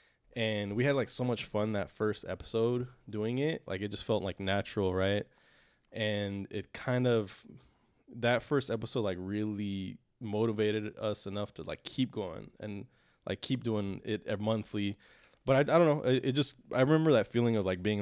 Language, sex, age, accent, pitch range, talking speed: English, male, 20-39, American, 95-115 Hz, 185 wpm